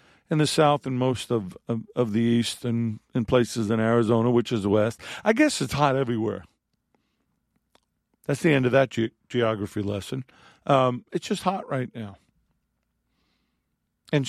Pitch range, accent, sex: 110-140 Hz, American, male